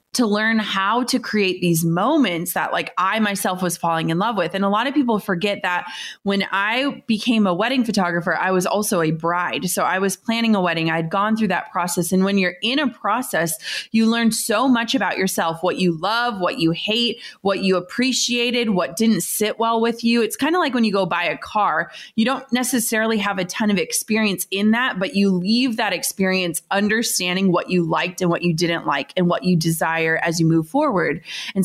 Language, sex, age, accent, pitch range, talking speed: English, female, 30-49, American, 175-225 Hz, 220 wpm